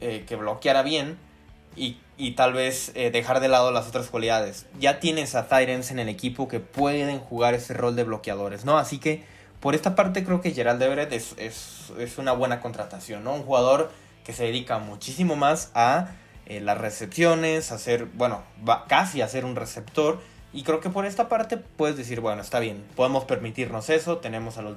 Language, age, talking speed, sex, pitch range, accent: Spanish, 20-39, 200 wpm, male, 110-140 Hz, Mexican